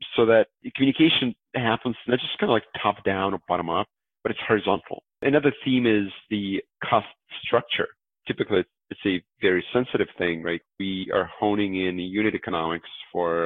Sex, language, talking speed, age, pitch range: male, English, 170 wpm, 40-59, 90-105 Hz